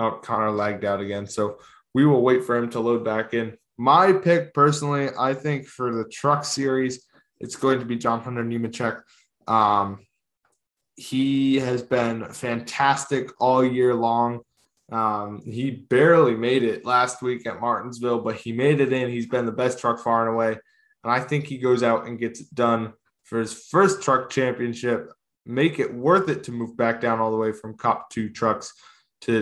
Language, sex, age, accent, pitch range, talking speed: English, male, 10-29, American, 115-140 Hz, 190 wpm